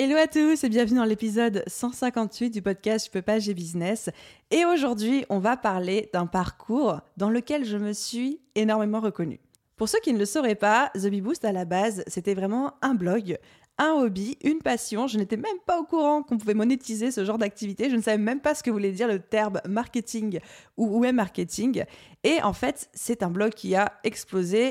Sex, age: female, 20-39